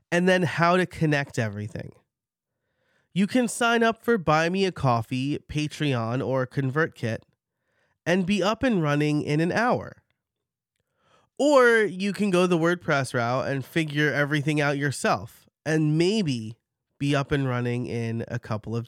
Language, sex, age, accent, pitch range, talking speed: English, male, 30-49, American, 120-170 Hz, 155 wpm